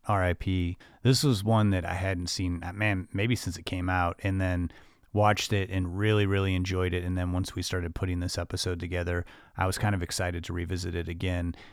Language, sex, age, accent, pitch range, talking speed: English, male, 30-49, American, 95-110 Hz, 210 wpm